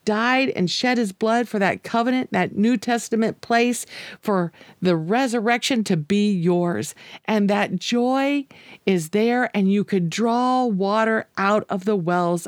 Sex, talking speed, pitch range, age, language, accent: female, 155 wpm, 175-220 Hz, 50-69, English, American